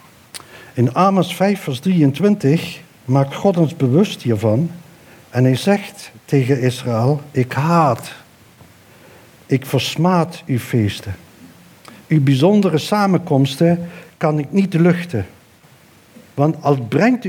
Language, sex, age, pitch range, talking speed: Dutch, male, 60-79, 130-175 Hz, 110 wpm